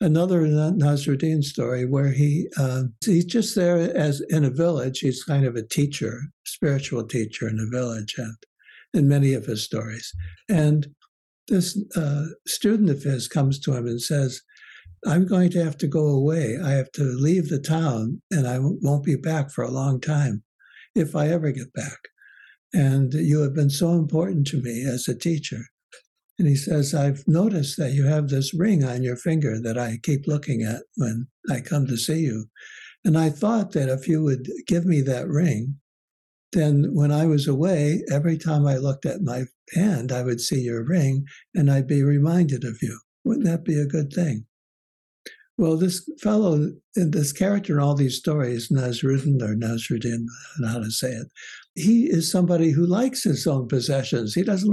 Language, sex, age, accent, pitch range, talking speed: English, male, 60-79, American, 130-165 Hz, 190 wpm